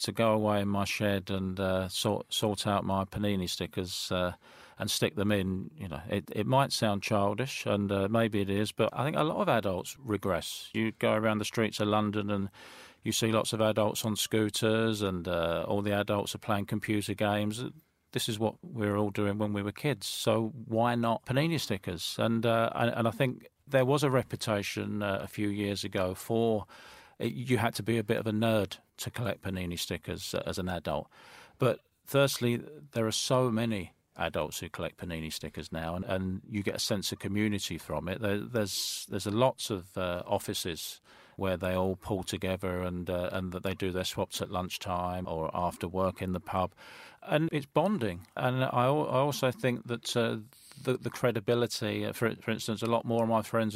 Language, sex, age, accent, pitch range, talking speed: English, male, 40-59, British, 95-115 Hz, 205 wpm